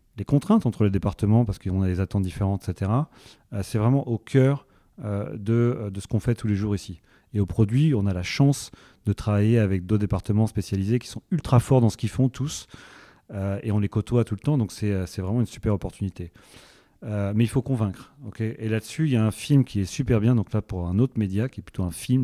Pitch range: 100-120 Hz